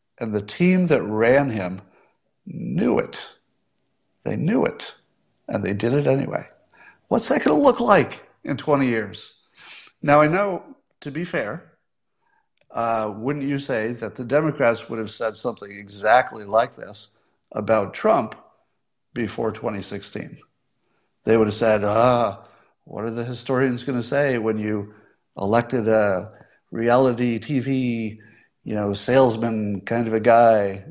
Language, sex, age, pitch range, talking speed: English, male, 60-79, 105-135 Hz, 145 wpm